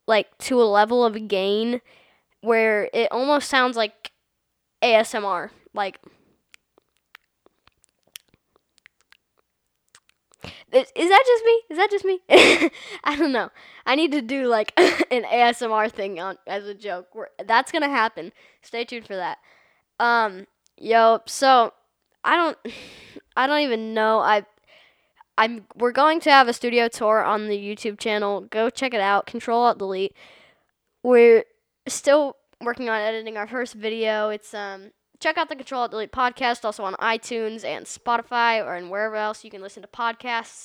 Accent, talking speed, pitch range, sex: American, 155 wpm, 215-270 Hz, female